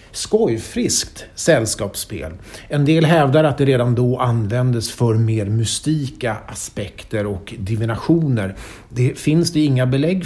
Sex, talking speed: male, 125 wpm